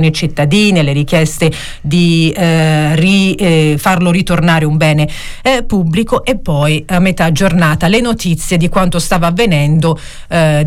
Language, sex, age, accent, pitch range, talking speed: Italian, female, 40-59, native, 155-190 Hz, 140 wpm